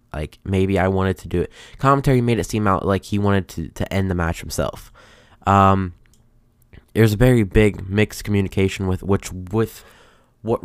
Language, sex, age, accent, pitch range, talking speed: English, male, 10-29, American, 90-110 Hz, 175 wpm